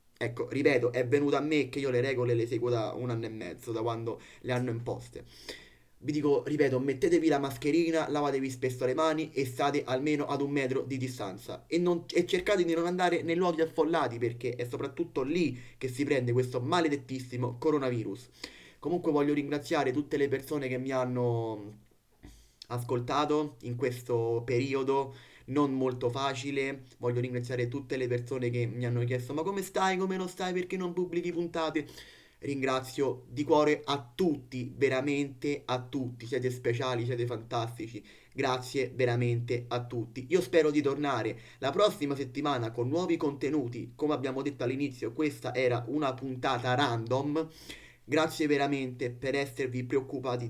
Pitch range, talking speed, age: 125-150 Hz, 160 wpm, 20-39